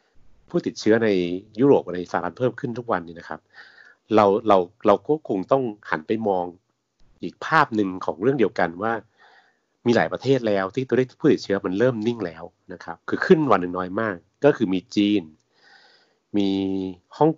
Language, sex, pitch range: Thai, male, 90-115 Hz